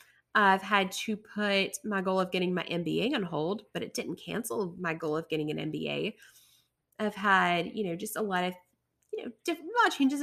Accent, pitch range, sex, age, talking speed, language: American, 185-240 Hz, female, 20-39, 200 wpm, English